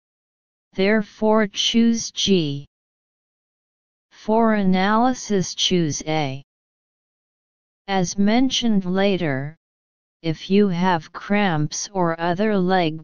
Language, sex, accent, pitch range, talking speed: English, female, American, 160-200 Hz, 80 wpm